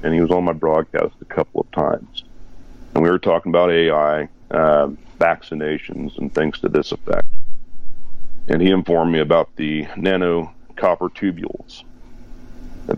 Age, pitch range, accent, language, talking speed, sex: 40-59, 80-105 Hz, American, English, 155 wpm, male